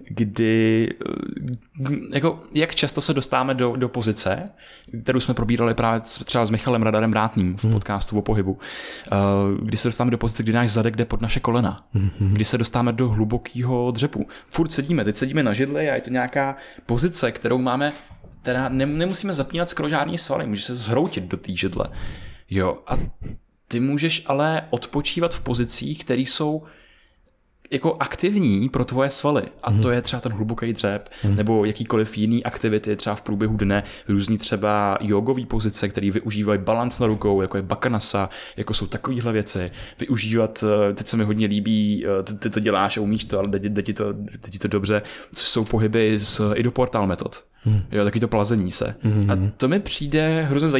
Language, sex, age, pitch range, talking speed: Czech, male, 20-39, 105-130 Hz, 170 wpm